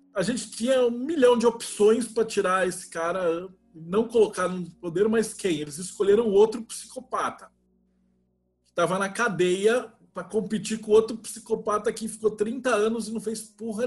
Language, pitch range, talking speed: Portuguese, 175-230 Hz, 165 wpm